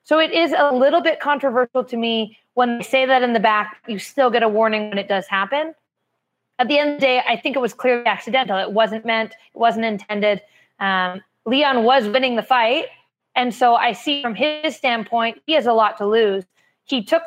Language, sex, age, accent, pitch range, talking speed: English, female, 20-39, American, 210-255 Hz, 220 wpm